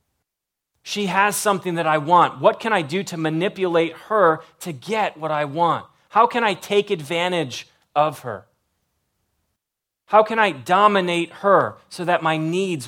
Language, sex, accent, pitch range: English, male, American, 130-175 Hz